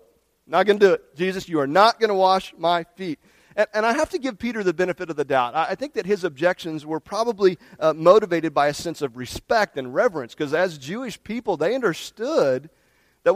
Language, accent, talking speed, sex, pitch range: English, American, 225 wpm, male, 155-225 Hz